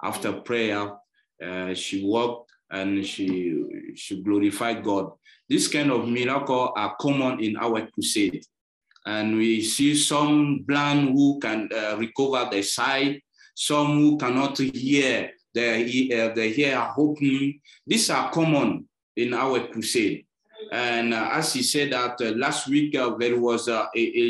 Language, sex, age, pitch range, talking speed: English, male, 30-49, 115-145 Hz, 140 wpm